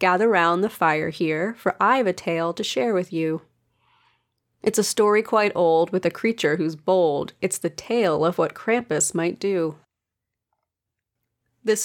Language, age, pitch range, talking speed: English, 30-49, 155-185 Hz, 160 wpm